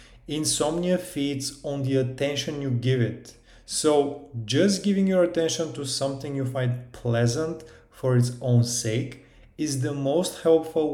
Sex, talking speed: male, 145 wpm